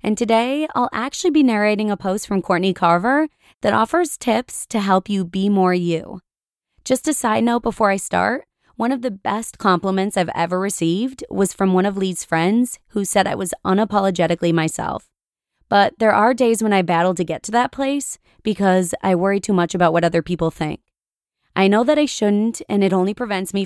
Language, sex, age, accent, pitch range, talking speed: English, female, 20-39, American, 180-230 Hz, 200 wpm